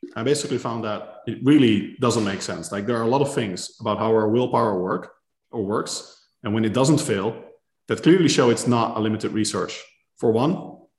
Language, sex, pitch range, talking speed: English, male, 115-155 Hz, 210 wpm